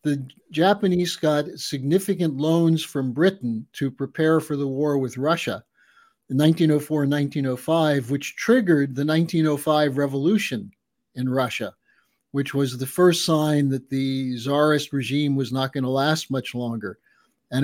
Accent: American